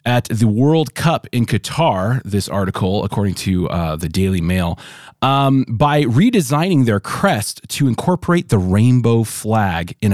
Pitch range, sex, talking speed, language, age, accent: 95-125 Hz, male, 150 wpm, English, 30-49, American